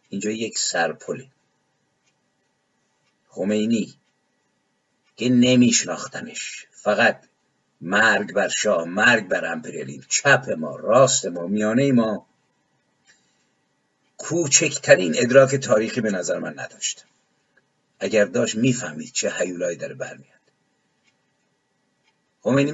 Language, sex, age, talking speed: Persian, male, 50-69, 90 wpm